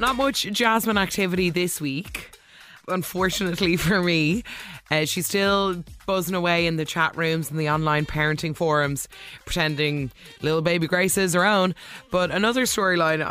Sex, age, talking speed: female, 20-39, 150 wpm